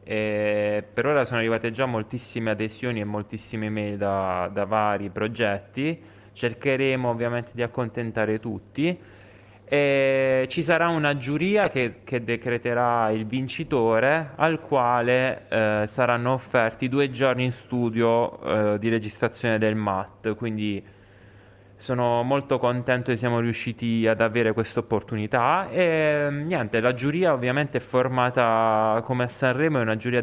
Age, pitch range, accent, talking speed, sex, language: 20-39, 110-130 Hz, native, 125 wpm, male, Italian